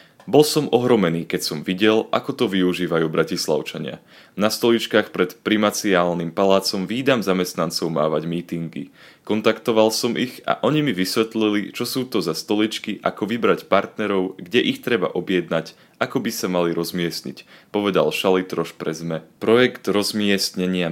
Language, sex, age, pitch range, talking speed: Slovak, male, 30-49, 85-110 Hz, 140 wpm